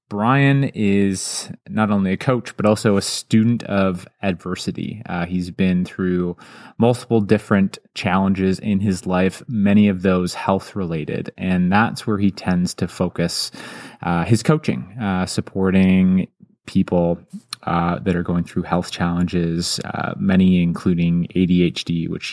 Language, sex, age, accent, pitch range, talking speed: English, male, 20-39, American, 90-105 Hz, 135 wpm